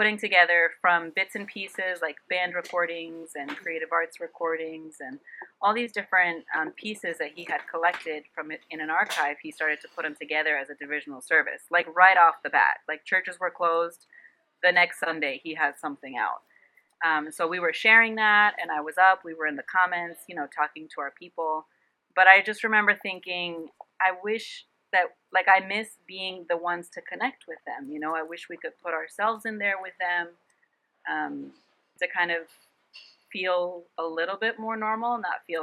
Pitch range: 155-190 Hz